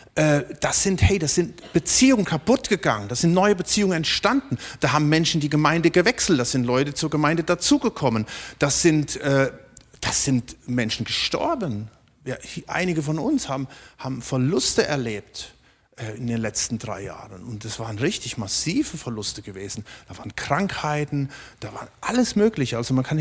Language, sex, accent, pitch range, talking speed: German, male, German, 125-170 Hz, 165 wpm